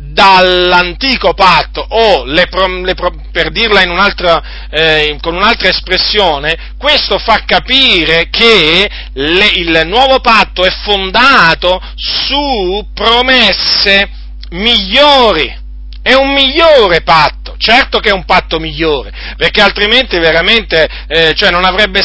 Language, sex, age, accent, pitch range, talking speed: Italian, male, 50-69, native, 170-215 Hz, 105 wpm